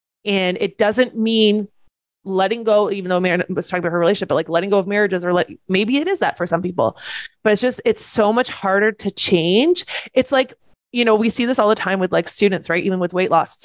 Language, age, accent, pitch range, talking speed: English, 20-39, American, 185-220 Hz, 250 wpm